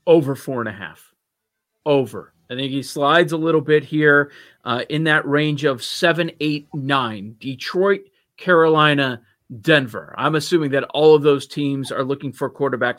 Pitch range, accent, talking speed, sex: 130-160 Hz, American, 150 wpm, male